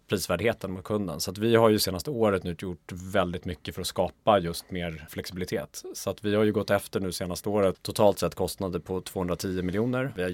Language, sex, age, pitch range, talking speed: Swedish, male, 30-49, 90-105 Hz, 220 wpm